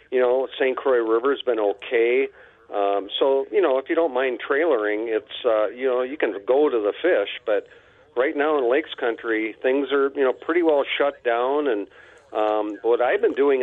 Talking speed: 205 wpm